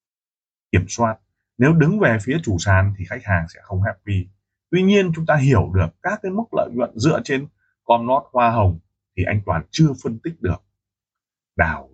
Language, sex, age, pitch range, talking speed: Vietnamese, male, 20-39, 95-130 Hz, 195 wpm